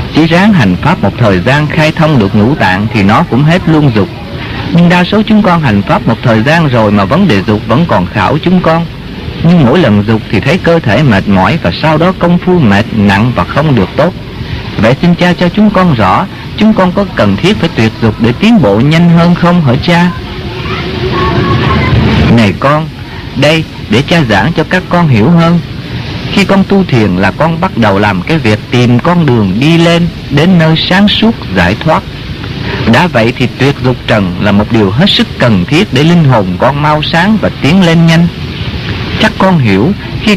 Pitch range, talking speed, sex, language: 110-175 Hz, 210 wpm, male, English